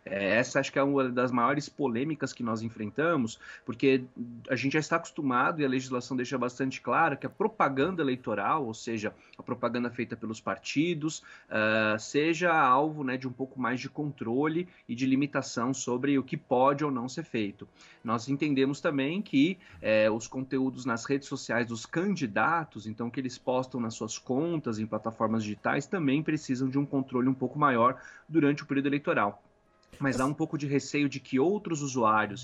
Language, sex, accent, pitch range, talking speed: Portuguese, male, Brazilian, 120-145 Hz, 180 wpm